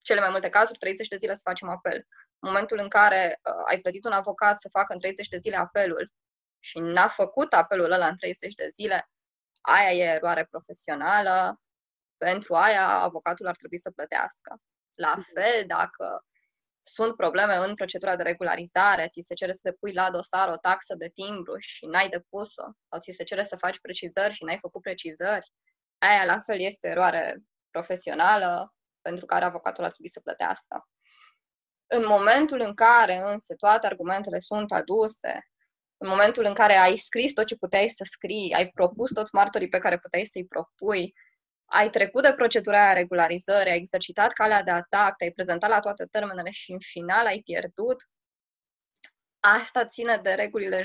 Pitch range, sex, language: 180-220 Hz, female, Romanian